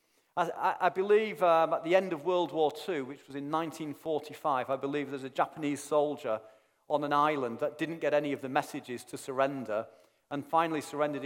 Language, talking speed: English, 190 wpm